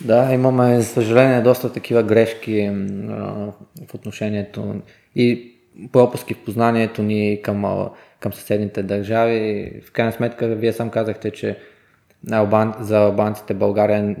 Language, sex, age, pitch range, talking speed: Bulgarian, male, 20-39, 100-110 Hz, 130 wpm